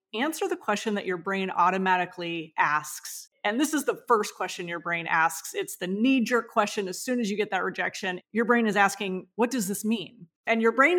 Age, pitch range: 30-49, 190-240 Hz